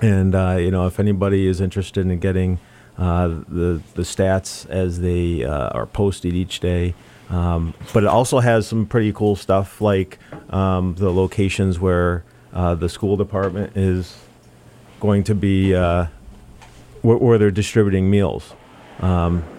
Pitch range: 85-95 Hz